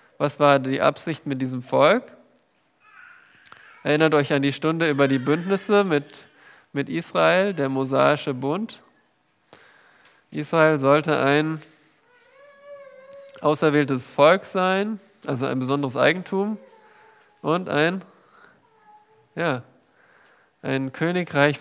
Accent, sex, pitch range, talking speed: German, male, 140-185 Hz, 95 wpm